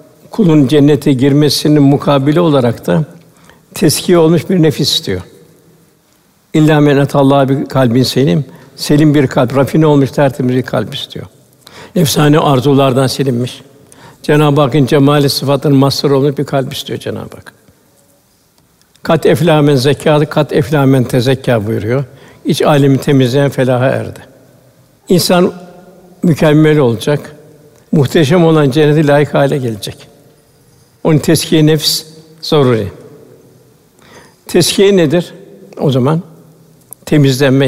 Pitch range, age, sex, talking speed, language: 140-155 Hz, 60-79, male, 110 wpm, Turkish